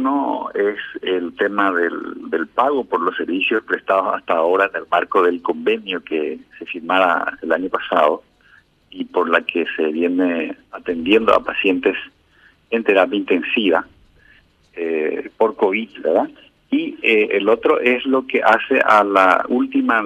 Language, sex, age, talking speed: Spanish, male, 50-69, 155 wpm